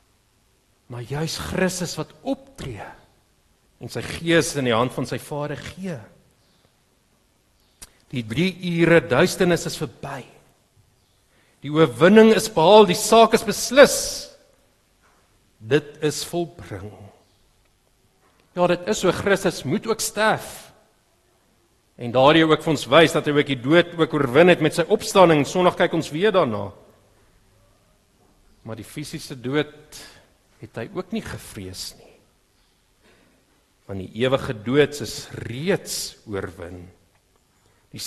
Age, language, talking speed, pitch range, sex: 50-69, English, 125 wpm, 110-170 Hz, male